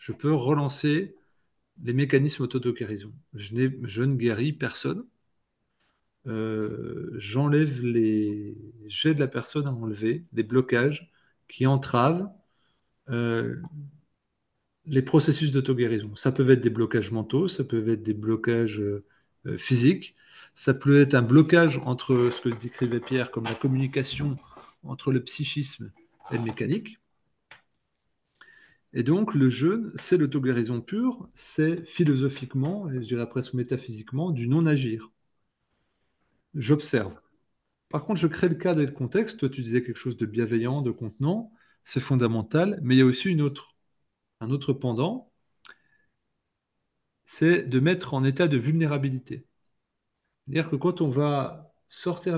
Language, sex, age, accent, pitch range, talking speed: French, male, 40-59, French, 120-155 Hz, 135 wpm